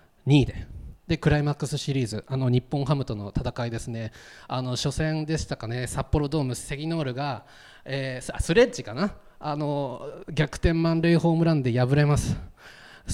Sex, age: male, 20-39